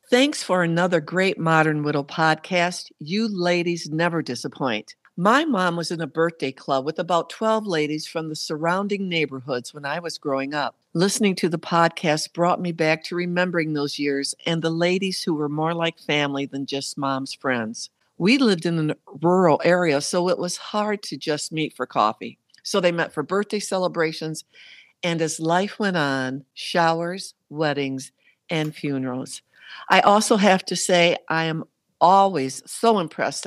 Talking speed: 170 wpm